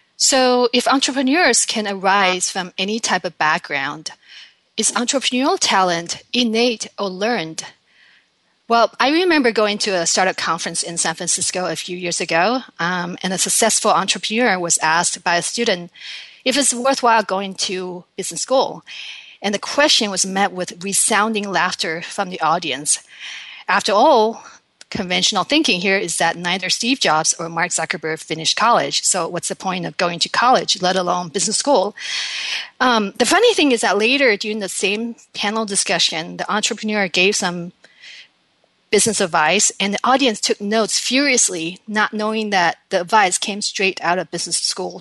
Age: 40-59